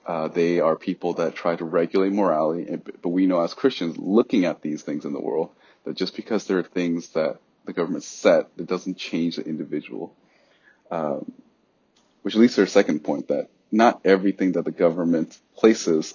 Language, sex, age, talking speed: English, male, 30-49, 185 wpm